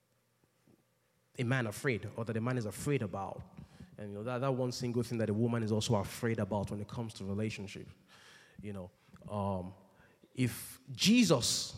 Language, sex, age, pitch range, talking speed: English, male, 20-39, 110-140 Hz, 180 wpm